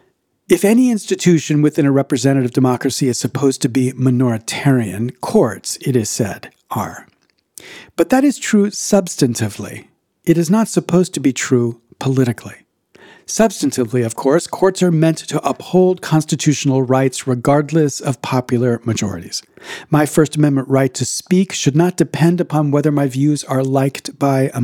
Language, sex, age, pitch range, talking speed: English, male, 50-69, 130-170 Hz, 150 wpm